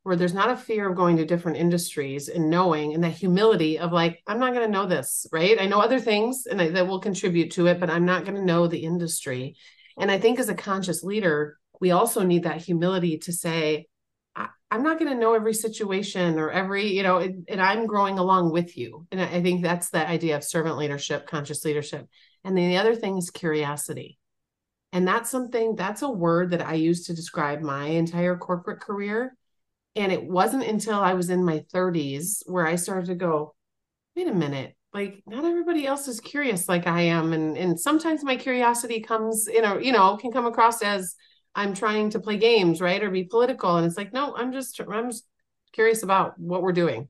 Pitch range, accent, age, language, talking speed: 170-215 Hz, American, 40-59, English, 210 wpm